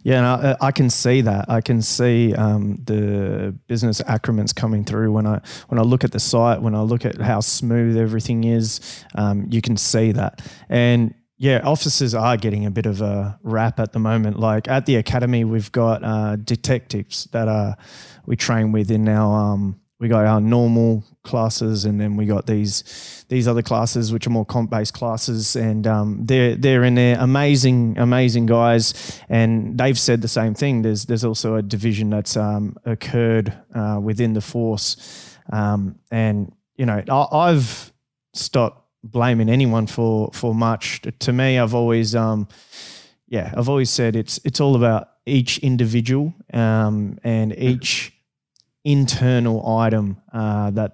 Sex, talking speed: male, 170 wpm